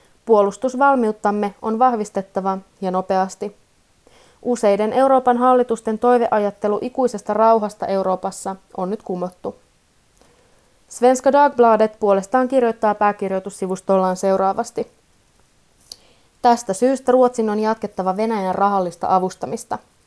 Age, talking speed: 30-49, 85 wpm